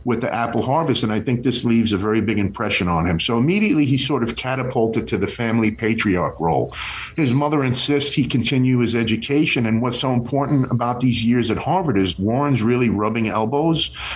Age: 50-69